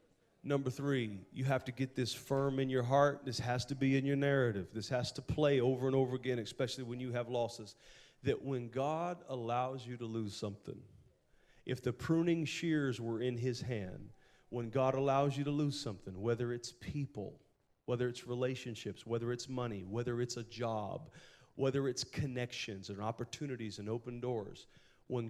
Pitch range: 120-145 Hz